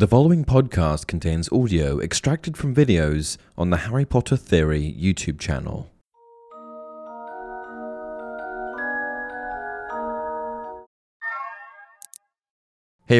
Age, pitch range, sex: 20-39, 80-120 Hz, male